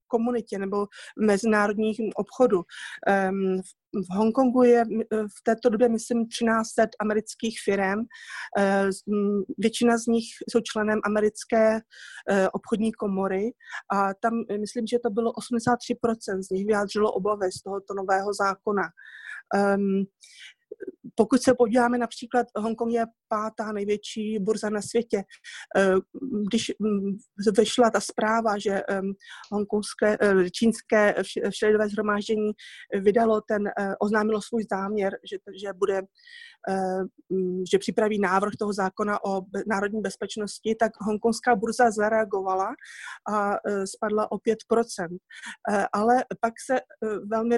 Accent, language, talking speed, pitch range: native, Czech, 105 wpm, 200-230 Hz